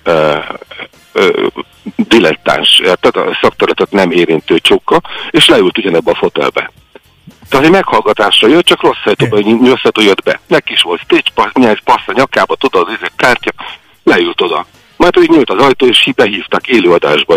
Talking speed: 160 wpm